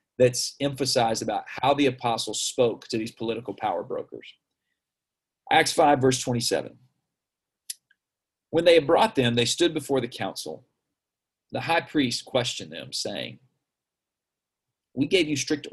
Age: 40-59